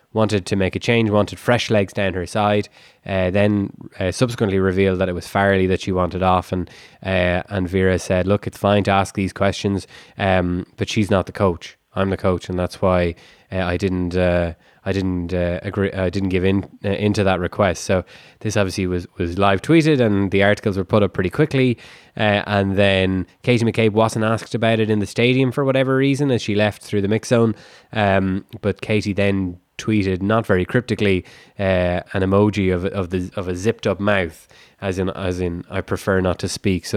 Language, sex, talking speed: English, male, 210 wpm